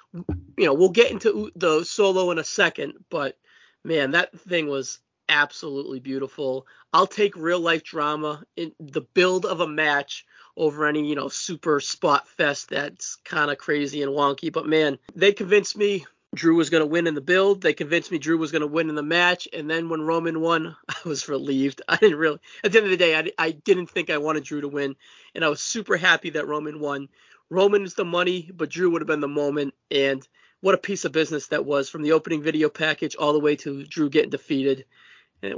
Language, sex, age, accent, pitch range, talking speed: English, male, 30-49, American, 150-180 Hz, 220 wpm